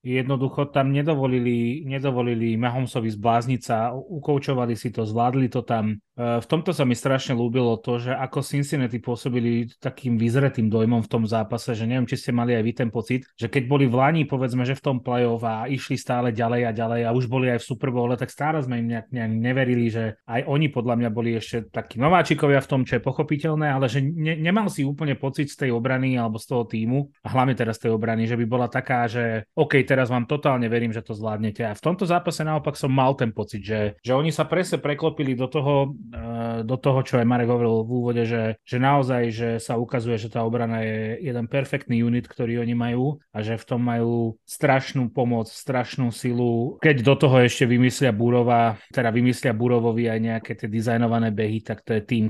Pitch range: 115-135 Hz